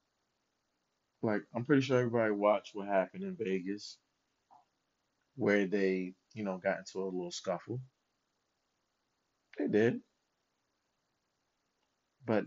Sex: male